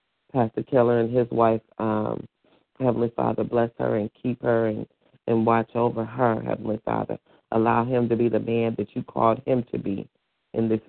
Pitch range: 110-120 Hz